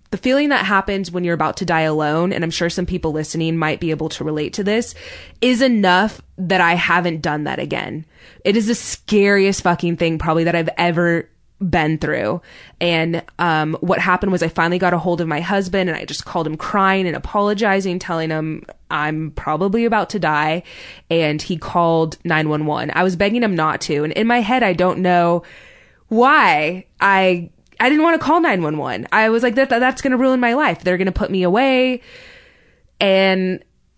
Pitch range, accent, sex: 160-200 Hz, American, female